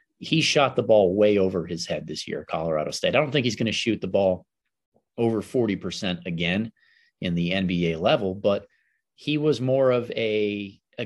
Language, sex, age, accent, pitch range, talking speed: English, male, 30-49, American, 90-110 Hz, 190 wpm